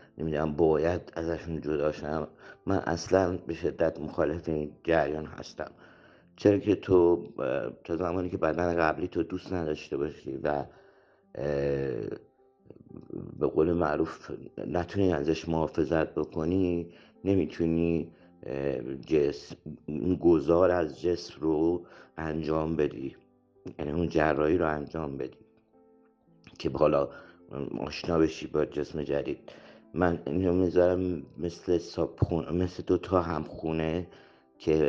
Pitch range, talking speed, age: 75-90 Hz, 105 wpm, 60-79